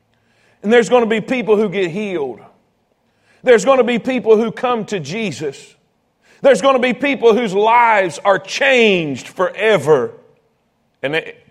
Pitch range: 210-285 Hz